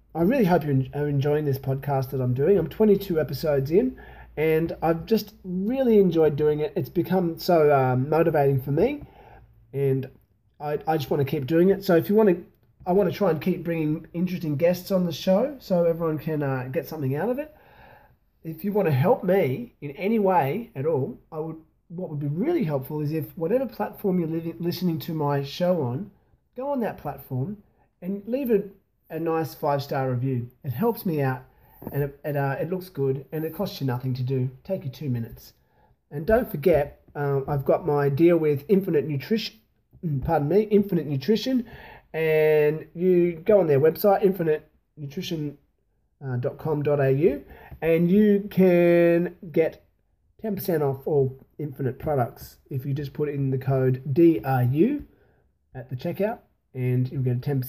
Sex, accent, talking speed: male, Australian, 175 wpm